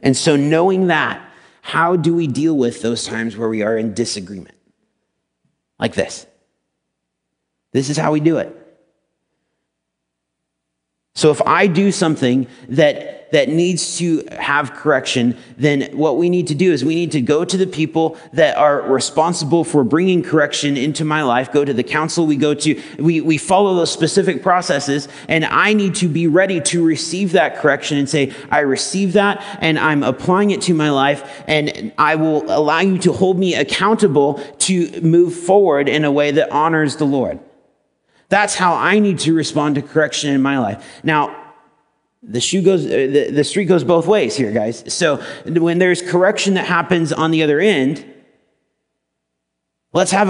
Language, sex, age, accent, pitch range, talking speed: English, male, 30-49, American, 135-175 Hz, 175 wpm